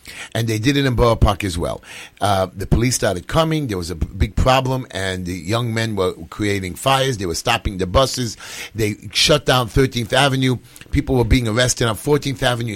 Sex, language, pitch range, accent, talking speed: male, English, 90-125 Hz, American, 205 wpm